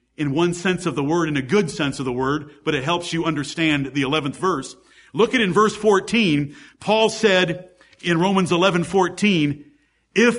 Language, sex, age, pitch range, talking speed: English, male, 50-69, 175-235 Hz, 190 wpm